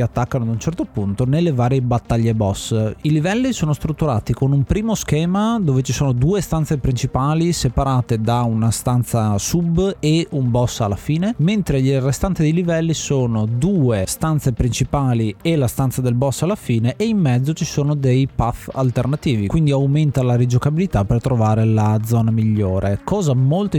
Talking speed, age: 170 wpm, 30-49